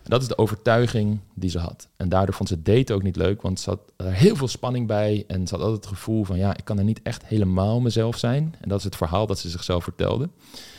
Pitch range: 90-110 Hz